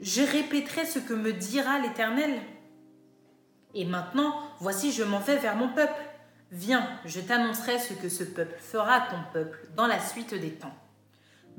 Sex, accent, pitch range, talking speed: female, French, 170-230 Hz, 170 wpm